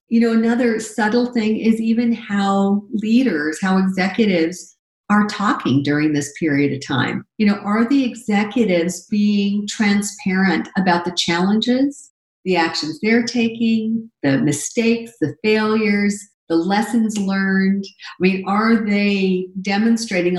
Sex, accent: female, American